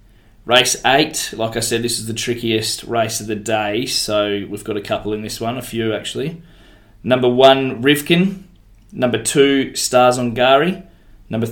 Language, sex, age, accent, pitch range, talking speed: English, male, 20-39, Australian, 110-130 Hz, 170 wpm